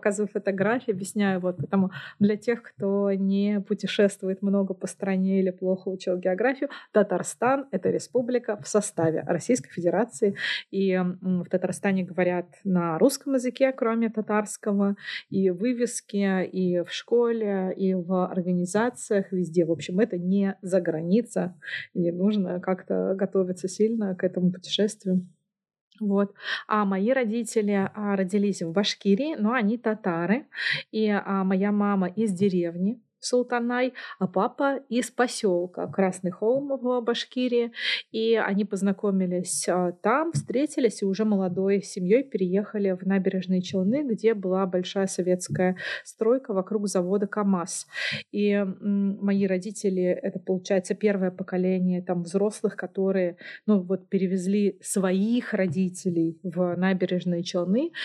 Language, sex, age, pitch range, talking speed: Russian, female, 20-39, 185-215 Hz, 125 wpm